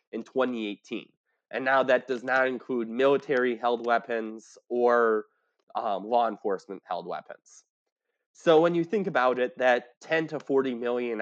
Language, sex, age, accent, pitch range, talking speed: English, male, 20-39, American, 115-140 Hz, 140 wpm